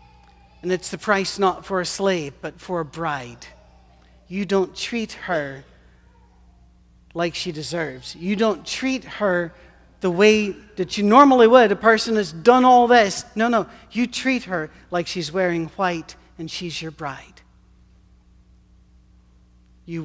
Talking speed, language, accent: 145 wpm, English, American